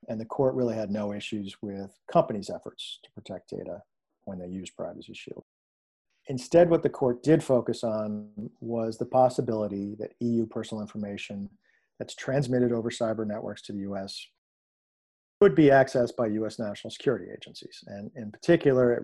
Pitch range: 105-125 Hz